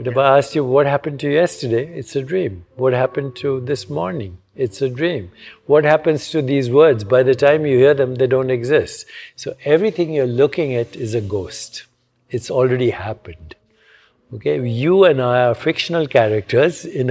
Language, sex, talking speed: English, male, 185 wpm